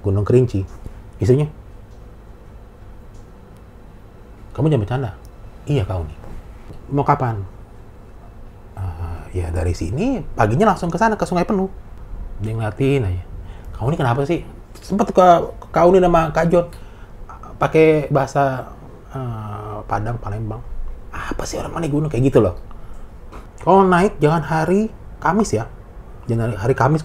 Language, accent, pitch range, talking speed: Indonesian, native, 95-130 Hz, 125 wpm